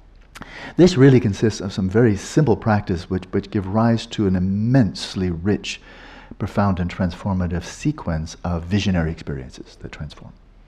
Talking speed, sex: 140 wpm, male